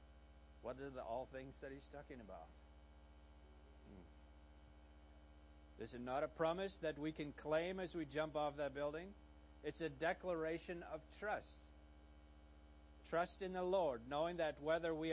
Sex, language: male, English